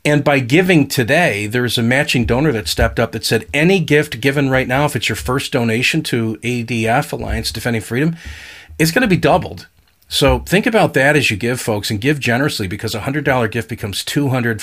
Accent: American